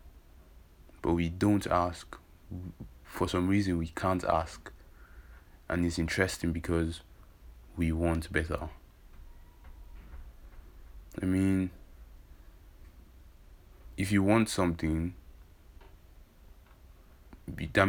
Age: 20-39